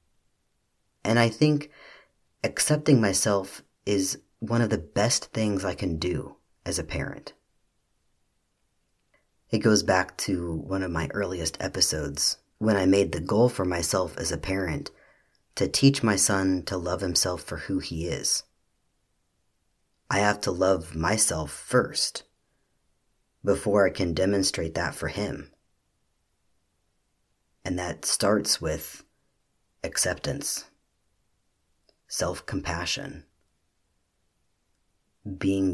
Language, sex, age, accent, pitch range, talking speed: English, male, 40-59, American, 85-105 Hz, 115 wpm